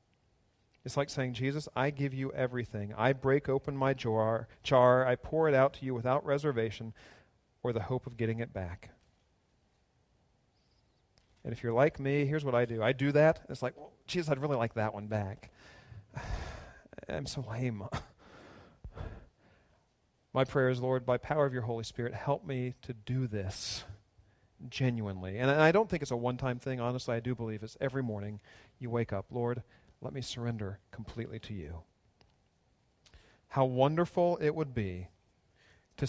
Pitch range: 110-140 Hz